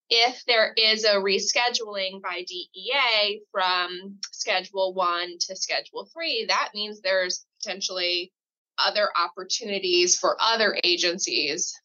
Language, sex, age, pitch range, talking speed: English, female, 20-39, 185-225 Hz, 110 wpm